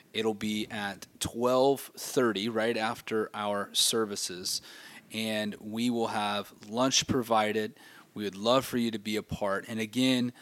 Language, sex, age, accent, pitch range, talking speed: English, male, 30-49, American, 105-125 Hz, 150 wpm